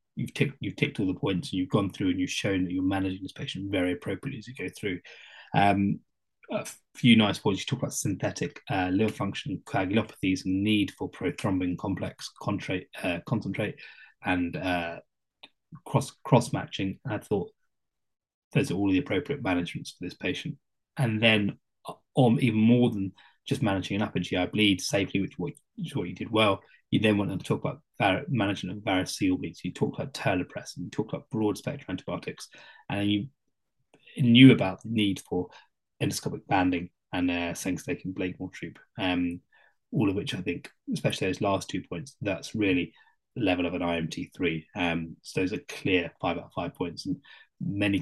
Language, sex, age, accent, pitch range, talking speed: English, male, 20-39, British, 90-110 Hz, 185 wpm